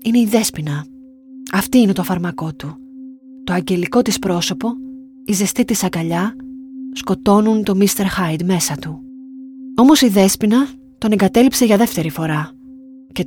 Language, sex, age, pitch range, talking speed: Greek, female, 20-39, 190-260 Hz, 140 wpm